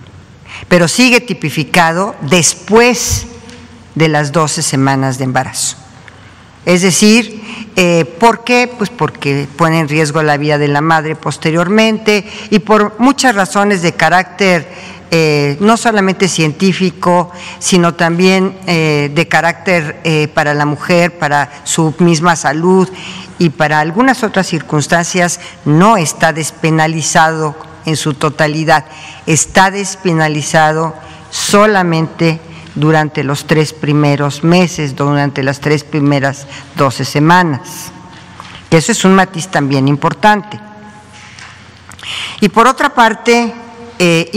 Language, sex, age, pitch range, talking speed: Spanish, female, 50-69, 150-185 Hz, 115 wpm